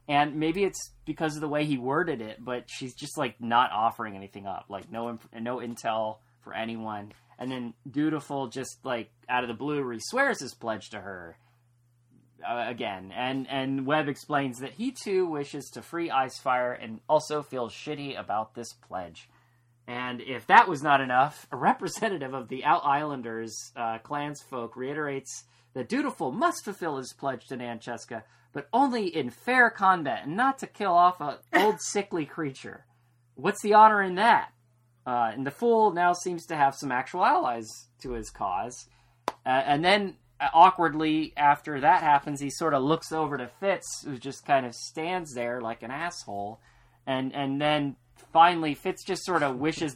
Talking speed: 180 wpm